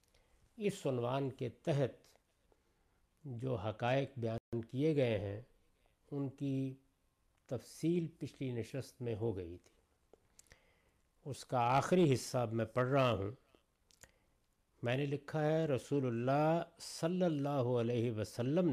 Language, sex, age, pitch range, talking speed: Urdu, male, 60-79, 110-145 Hz, 120 wpm